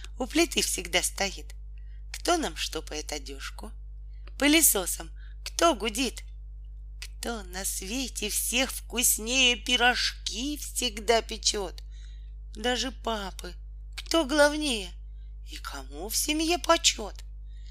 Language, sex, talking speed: Russian, female, 95 wpm